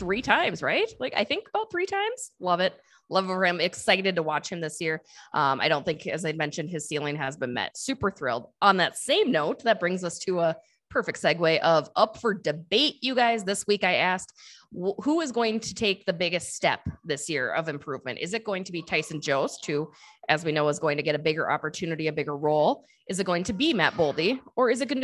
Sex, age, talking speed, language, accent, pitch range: female, 20-39, 240 wpm, English, American, 155-220 Hz